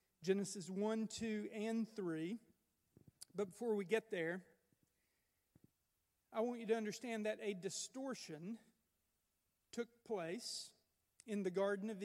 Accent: American